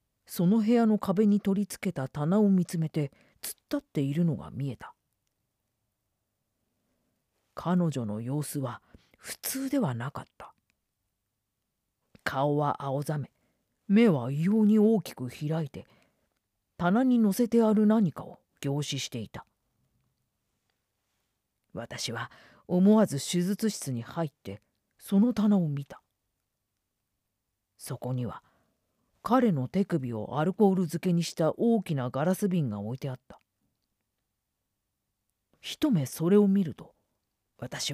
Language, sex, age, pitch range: Japanese, female, 40-59, 115-185 Hz